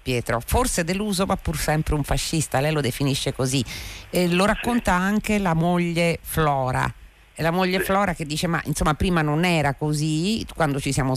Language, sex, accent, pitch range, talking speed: Italian, female, native, 120-170 Hz, 175 wpm